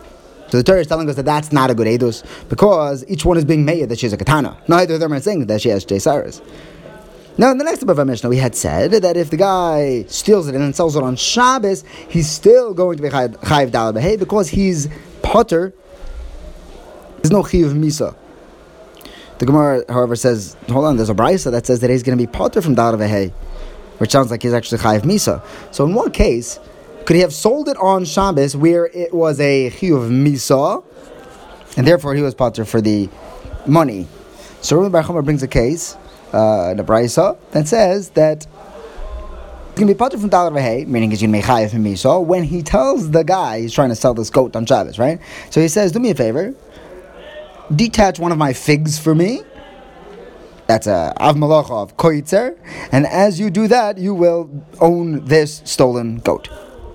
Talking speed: 195 wpm